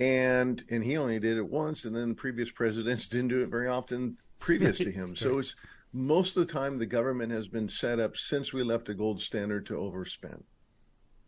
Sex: male